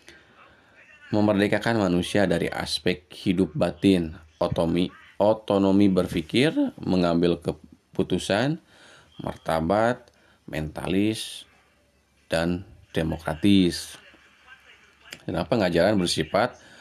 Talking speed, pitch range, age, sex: 65 wpm, 85-105 Hz, 30-49, male